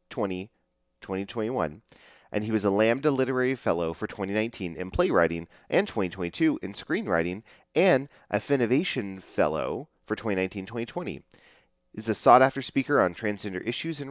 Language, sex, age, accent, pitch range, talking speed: English, male, 30-49, American, 85-130 Hz, 130 wpm